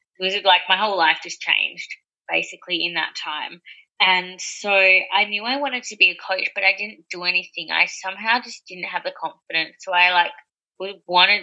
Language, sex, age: English, female, 20-39